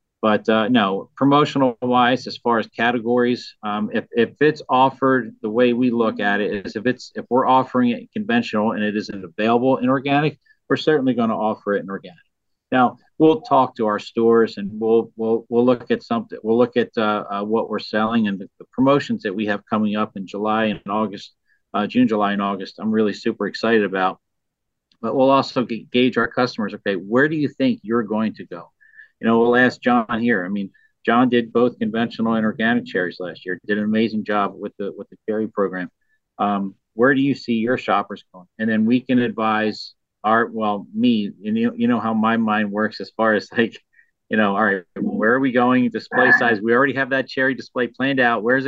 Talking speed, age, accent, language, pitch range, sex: 215 wpm, 40-59, American, English, 110-130 Hz, male